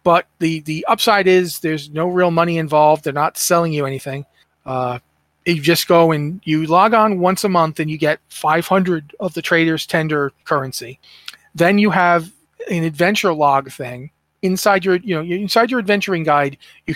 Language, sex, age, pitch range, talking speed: English, male, 30-49, 155-195 Hz, 170 wpm